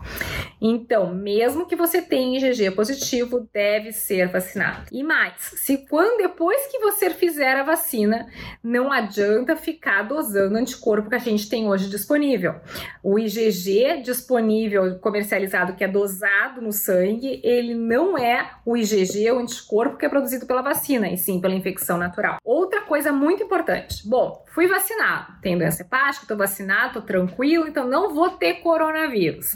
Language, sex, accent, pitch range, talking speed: Portuguese, female, Brazilian, 210-295 Hz, 155 wpm